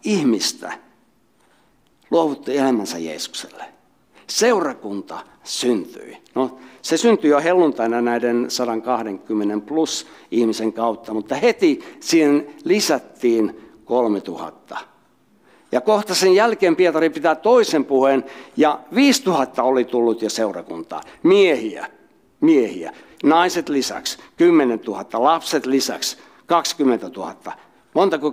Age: 60-79